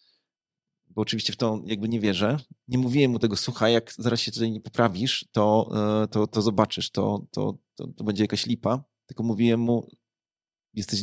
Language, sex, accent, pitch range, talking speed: Polish, male, native, 110-125 Hz, 165 wpm